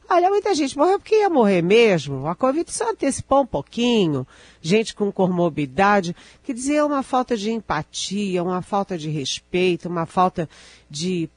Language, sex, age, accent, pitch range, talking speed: Portuguese, female, 40-59, Brazilian, 155-195 Hz, 160 wpm